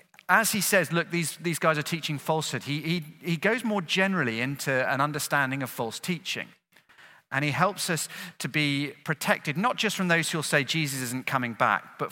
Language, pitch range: English, 130-180 Hz